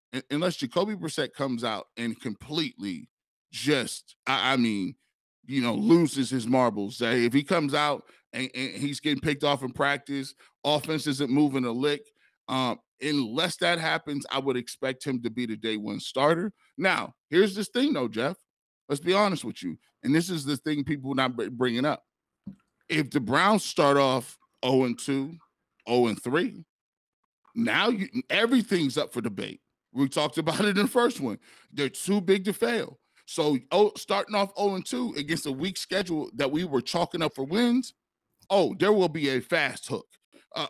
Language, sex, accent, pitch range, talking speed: English, male, American, 130-175 Hz, 170 wpm